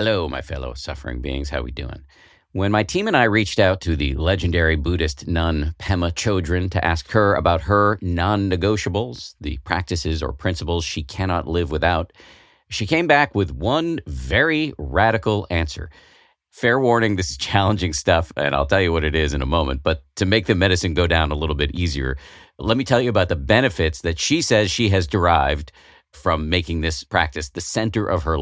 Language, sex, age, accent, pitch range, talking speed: English, male, 50-69, American, 80-110 Hz, 195 wpm